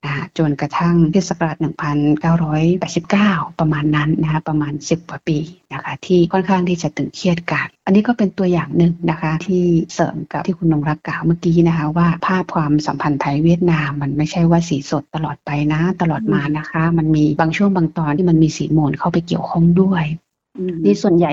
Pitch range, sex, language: 155-180 Hz, female, Thai